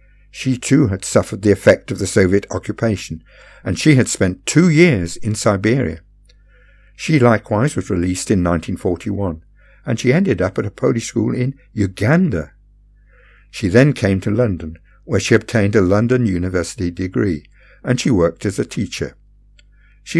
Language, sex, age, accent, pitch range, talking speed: English, male, 60-79, British, 90-120 Hz, 155 wpm